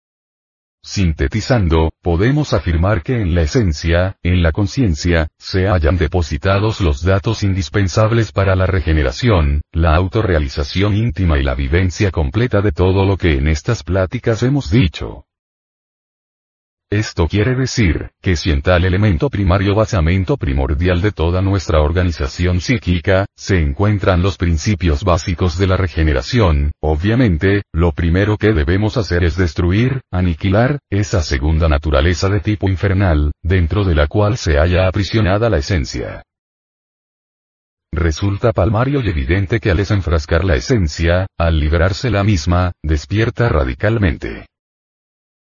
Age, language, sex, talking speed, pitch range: 40-59, Spanish, male, 130 wpm, 85-105 Hz